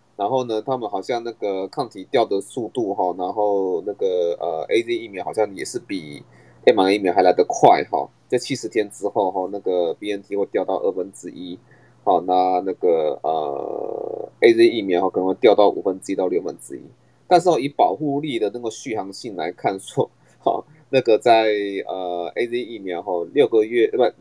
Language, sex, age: Chinese, male, 20-39